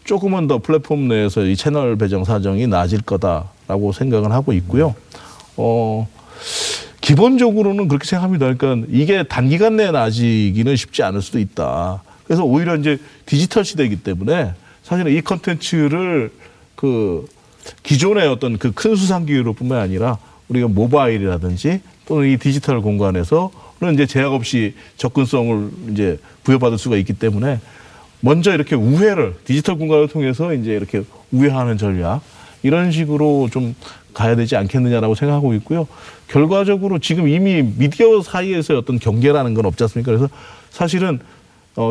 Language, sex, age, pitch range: Korean, male, 40-59, 110-155 Hz